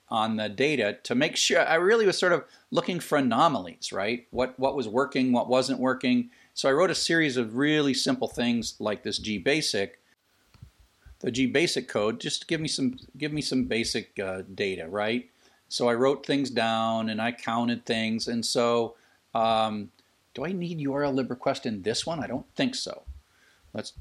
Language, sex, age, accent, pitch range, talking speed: English, male, 40-59, American, 110-135 Hz, 190 wpm